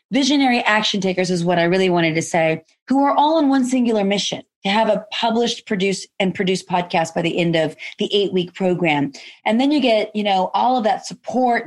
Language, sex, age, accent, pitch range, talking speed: English, female, 30-49, American, 195-265 Hz, 220 wpm